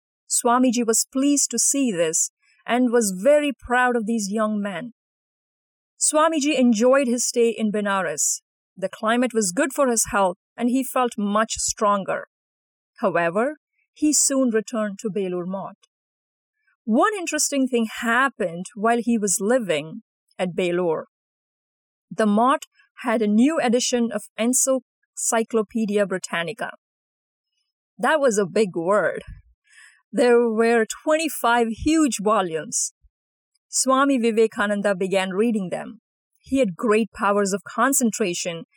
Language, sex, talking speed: English, female, 120 wpm